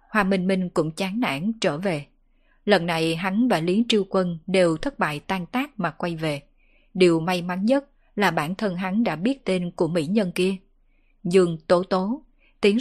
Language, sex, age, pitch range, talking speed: Vietnamese, female, 20-39, 175-220 Hz, 195 wpm